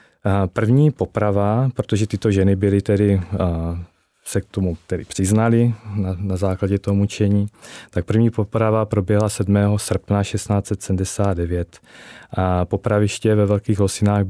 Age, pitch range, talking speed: 20-39, 95-105 Hz, 125 wpm